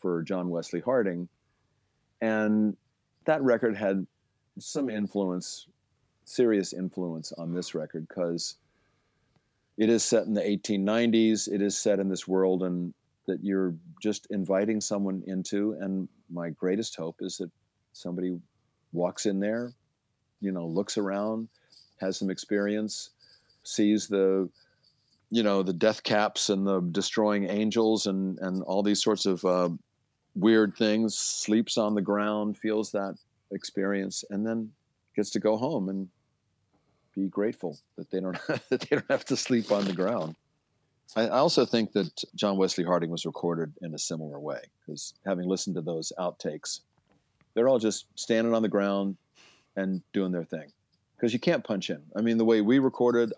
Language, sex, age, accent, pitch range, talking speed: English, male, 50-69, American, 95-110 Hz, 160 wpm